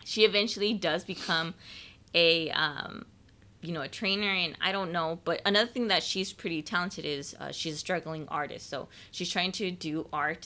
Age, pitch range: 20-39, 150-185 Hz